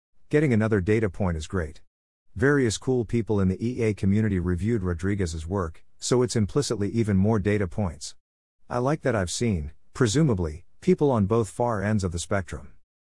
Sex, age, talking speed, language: male, 50-69, 170 wpm, English